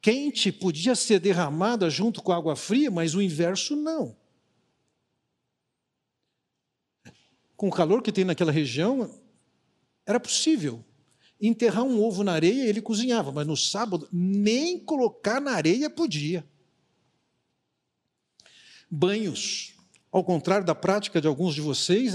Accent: Brazilian